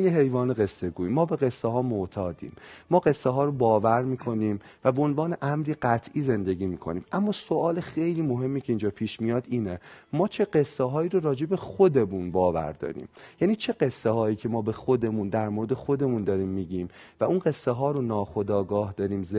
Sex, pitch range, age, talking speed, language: male, 105-150 Hz, 40-59, 190 wpm, Persian